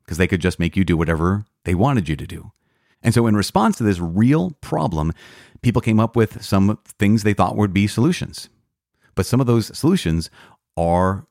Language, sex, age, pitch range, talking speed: English, male, 40-59, 90-115 Hz, 200 wpm